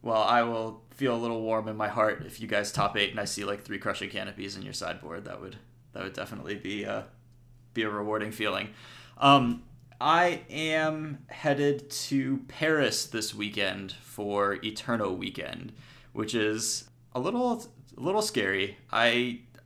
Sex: male